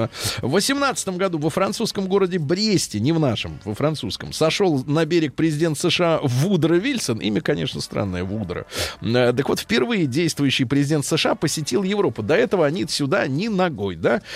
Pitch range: 130-185 Hz